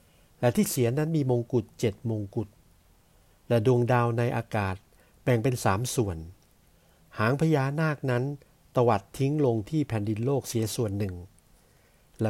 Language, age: Thai, 60-79